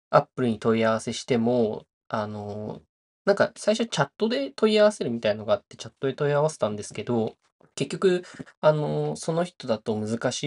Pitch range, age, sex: 110-135 Hz, 20-39, male